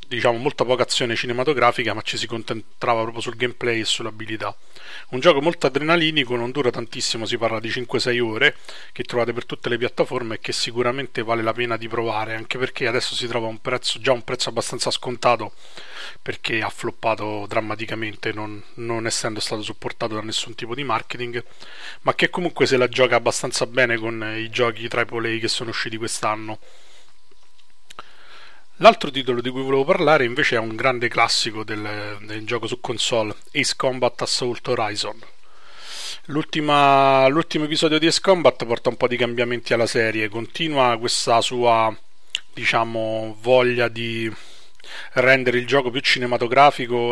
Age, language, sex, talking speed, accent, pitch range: 30-49, Italian, male, 160 wpm, native, 115-125 Hz